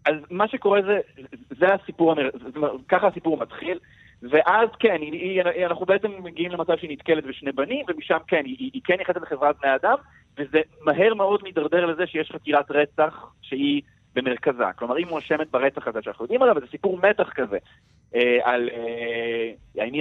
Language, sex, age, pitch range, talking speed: Hebrew, male, 40-59, 125-180 Hz, 175 wpm